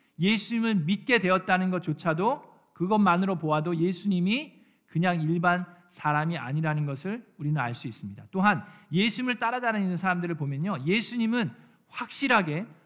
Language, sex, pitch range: Korean, male, 165-235 Hz